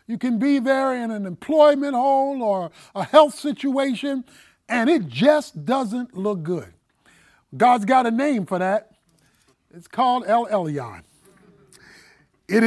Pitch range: 215-300 Hz